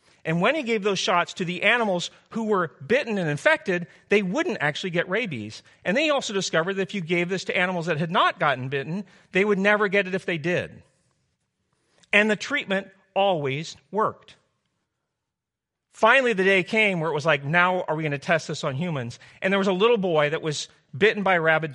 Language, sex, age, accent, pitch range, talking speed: English, male, 40-59, American, 150-195 Hz, 215 wpm